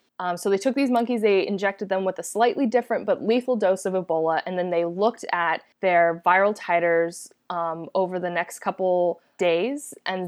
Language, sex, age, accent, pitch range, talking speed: English, female, 20-39, American, 180-220 Hz, 195 wpm